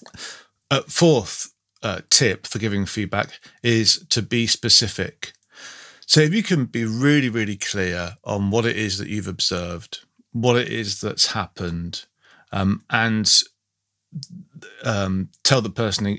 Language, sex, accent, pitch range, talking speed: English, male, British, 95-120 Hz, 135 wpm